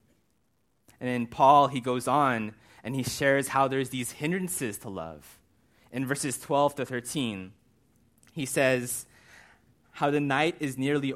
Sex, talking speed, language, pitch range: male, 145 wpm, English, 120-145 Hz